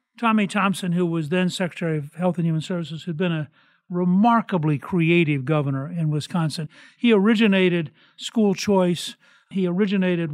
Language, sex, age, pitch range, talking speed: English, male, 60-79, 165-205 Hz, 145 wpm